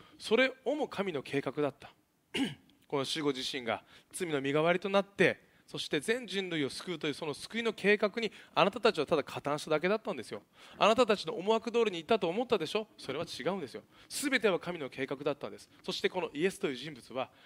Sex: male